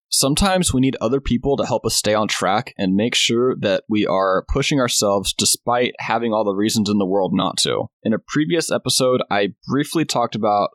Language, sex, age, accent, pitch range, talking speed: English, male, 20-39, American, 105-130 Hz, 205 wpm